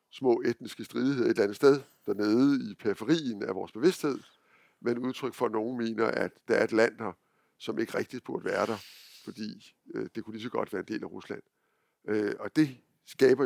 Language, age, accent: Danish, 60-79, native